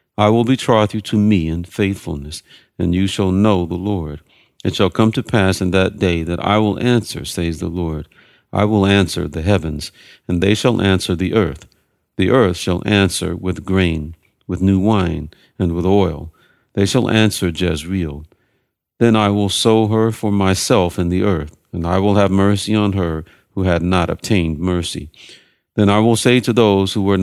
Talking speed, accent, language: 190 wpm, American, English